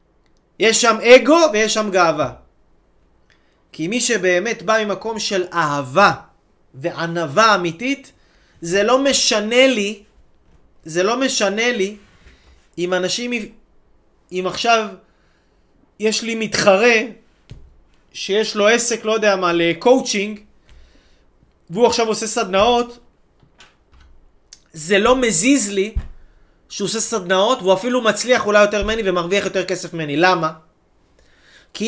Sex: male